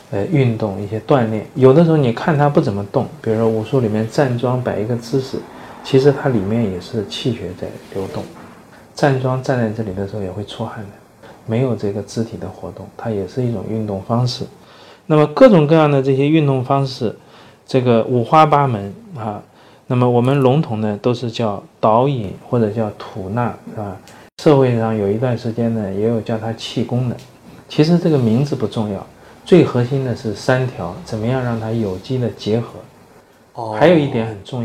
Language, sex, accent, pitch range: Chinese, male, native, 110-135 Hz